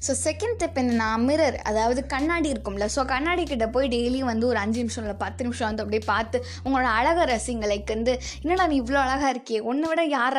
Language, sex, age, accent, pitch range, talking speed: Tamil, female, 20-39, native, 220-275 Hz, 200 wpm